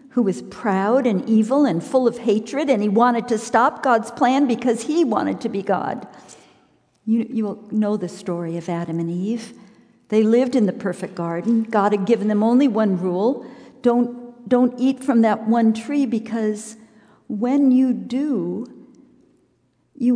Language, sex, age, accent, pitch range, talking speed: English, female, 50-69, American, 220-265 Hz, 170 wpm